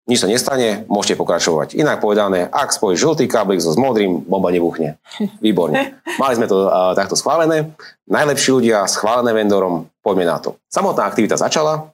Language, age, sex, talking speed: Slovak, 30-49, male, 165 wpm